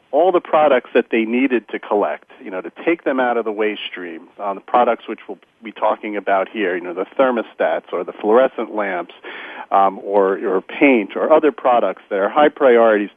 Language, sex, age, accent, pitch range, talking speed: English, male, 40-59, American, 110-135 Hz, 210 wpm